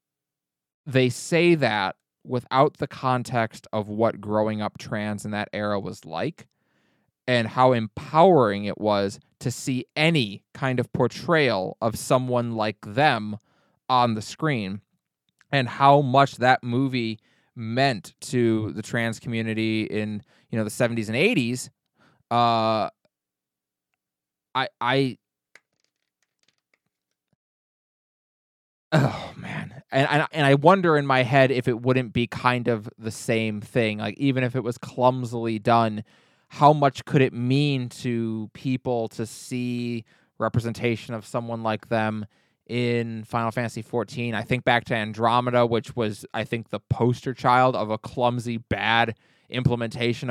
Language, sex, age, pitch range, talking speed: English, male, 20-39, 110-130 Hz, 135 wpm